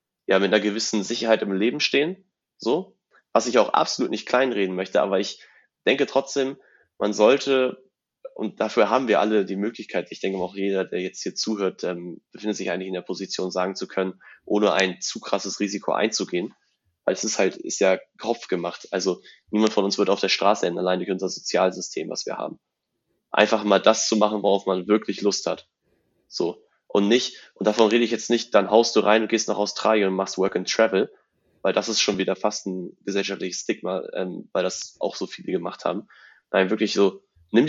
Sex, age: male, 20-39